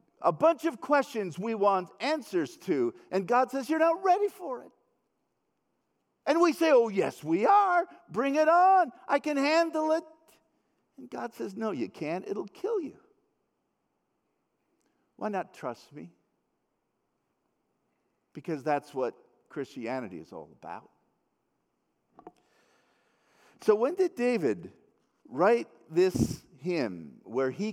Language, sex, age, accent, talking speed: English, male, 50-69, American, 130 wpm